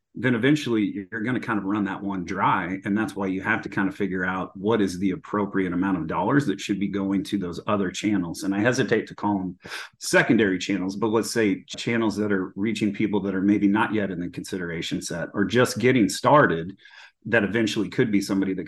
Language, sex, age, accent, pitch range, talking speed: English, male, 30-49, American, 95-115 Hz, 230 wpm